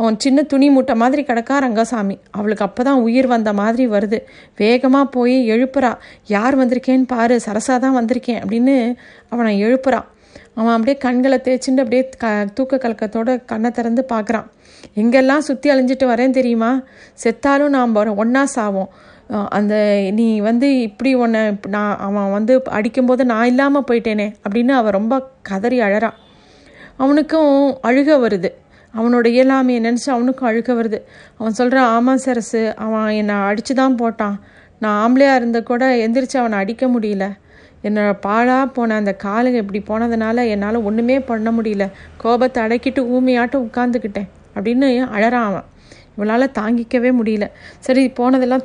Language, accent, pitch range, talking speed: Tamil, native, 220-260 Hz, 135 wpm